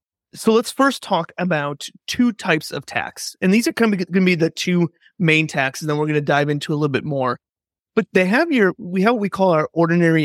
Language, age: English, 30-49